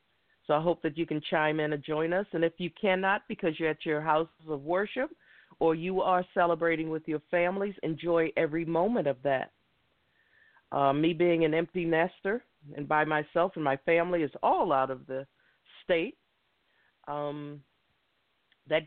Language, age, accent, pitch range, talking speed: English, 50-69, American, 140-180 Hz, 170 wpm